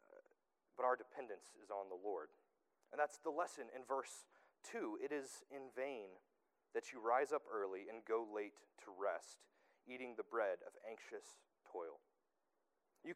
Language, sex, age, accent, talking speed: English, male, 30-49, American, 155 wpm